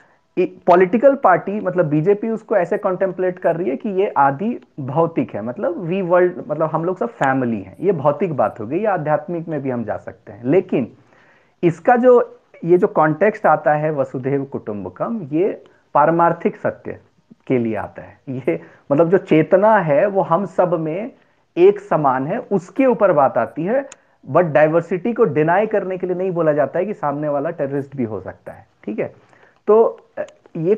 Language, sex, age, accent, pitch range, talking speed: Hindi, male, 30-49, native, 145-195 Hz, 180 wpm